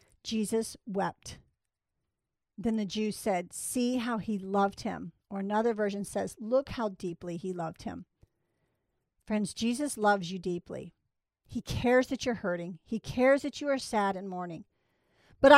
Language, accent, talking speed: English, American, 155 wpm